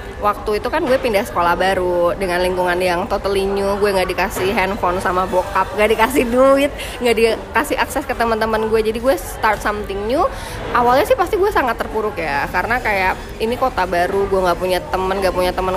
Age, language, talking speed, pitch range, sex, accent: 20-39, Indonesian, 195 wpm, 185-230 Hz, female, native